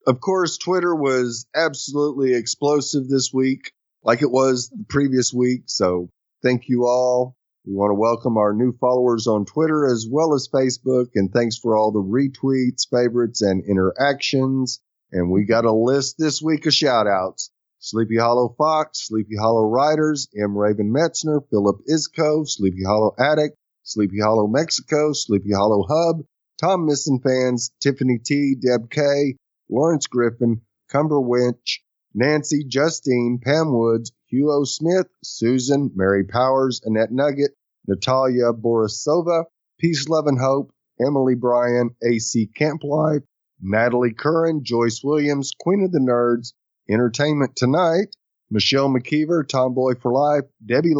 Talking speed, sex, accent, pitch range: 140 wpm, male, American, 115-150 Hz